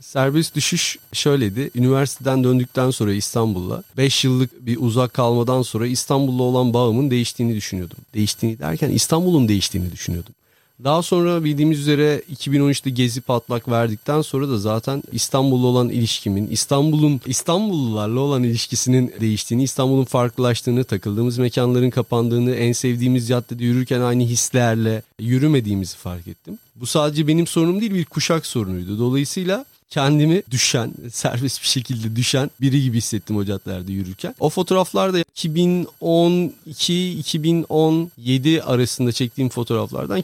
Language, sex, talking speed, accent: Turkish, male, 120 wpm, native